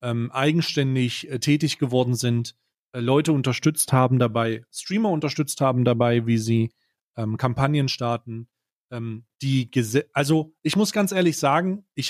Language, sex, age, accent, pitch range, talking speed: German, male, 30-49, German, 130-155 Hz, 150 wpm